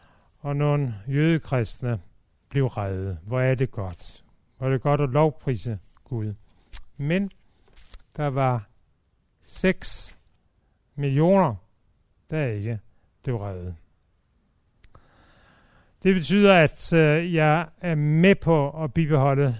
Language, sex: Danish, male